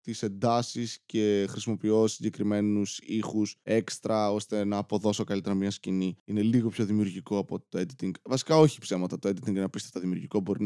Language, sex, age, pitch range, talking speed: Greek, male, 20-39, 105-125 Hz, 175 wpm